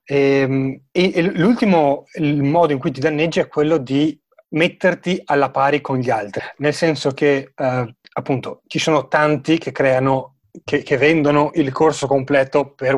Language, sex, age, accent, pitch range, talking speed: Italian, male, 30-49, native, 135-160 Hz, 155 wpm